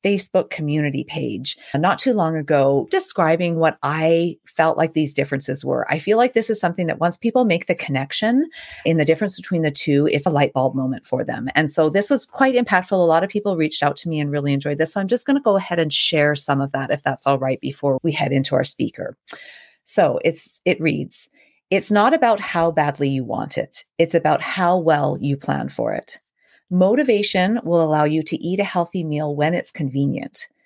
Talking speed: 220 wpm